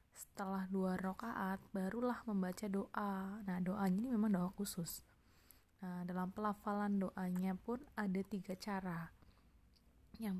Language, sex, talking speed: Malay, female, 120 wpm